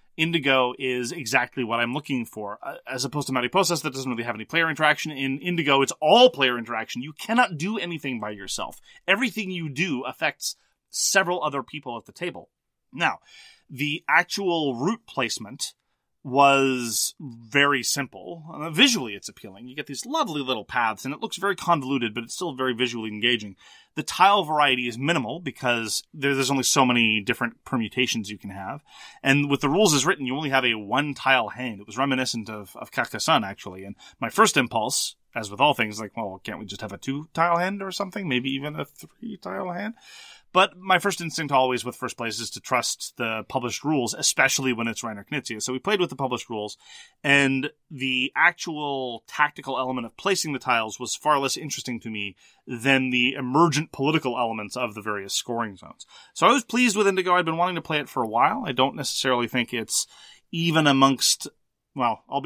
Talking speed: 195 wpm